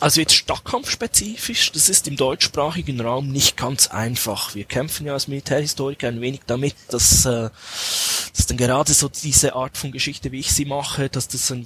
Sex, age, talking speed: male, 20-39, 185 wpm